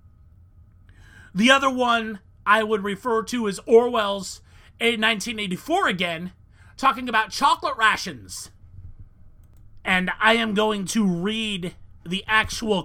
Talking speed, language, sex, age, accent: 105 wpm, English, male, 30-49, American